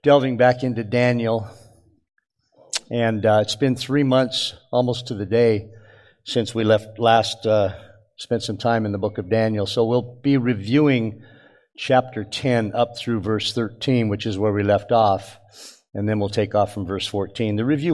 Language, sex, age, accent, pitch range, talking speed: English, male, 50-69, American, 110-135 Hz, 175 wpm